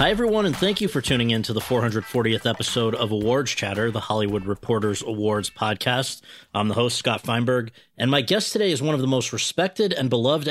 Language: English